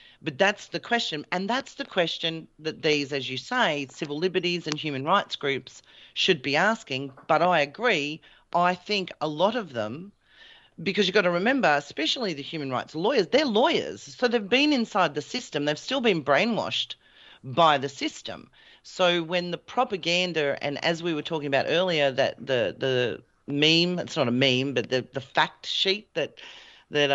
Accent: Australian